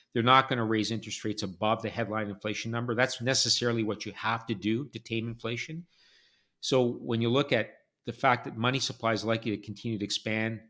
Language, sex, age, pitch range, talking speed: English, male, 50-69, 105-120 Hz, 215 wpm